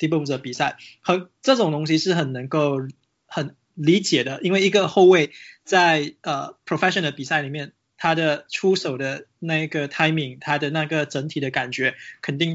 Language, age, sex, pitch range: Chinese, 20-39, male, 140-165 Hz